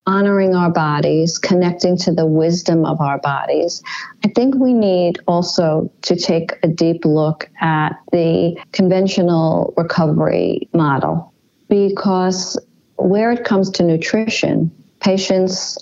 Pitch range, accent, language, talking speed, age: 155-190 Hz, American, English, 120 wpm, 50-69